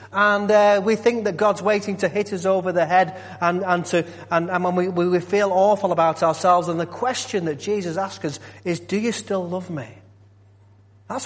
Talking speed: 210 wpm